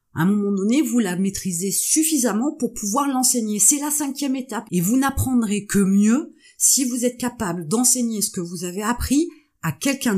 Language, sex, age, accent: French, female, 30-49, French